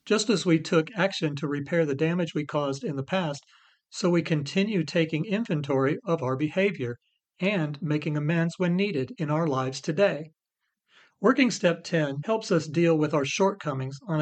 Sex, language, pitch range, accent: male, English, 145-185 Hz, American